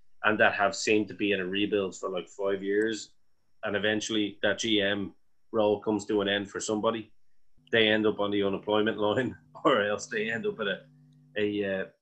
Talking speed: 200 wpm